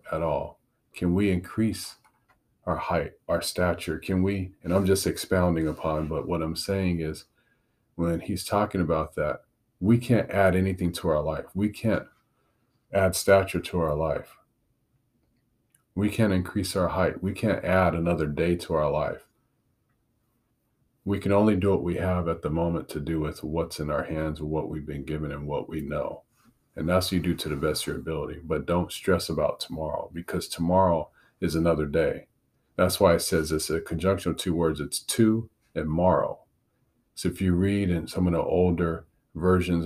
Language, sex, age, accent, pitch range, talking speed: English, male, 40-59, American, 80-95 Hz, 185 wpm